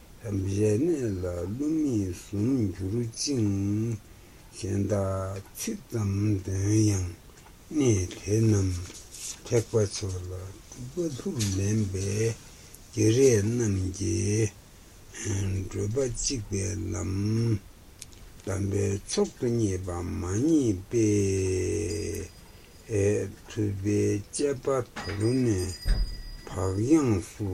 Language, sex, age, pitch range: Italian, male, 60-79, 95-110 Hz